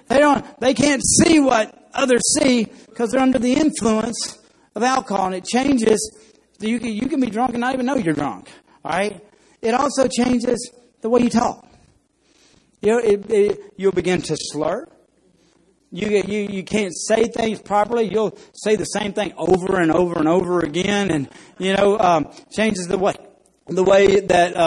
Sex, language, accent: male, English, American